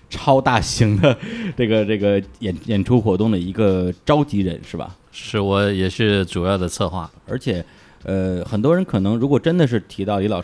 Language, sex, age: Chinese, male, 20-39